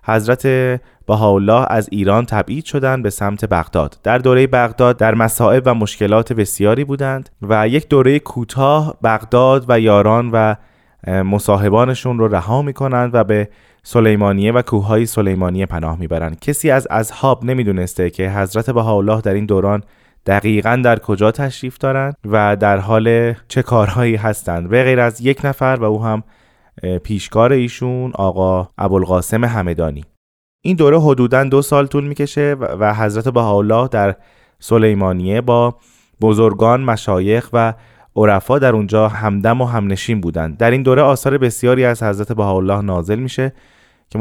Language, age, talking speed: Persian, 20-39, 150 wpm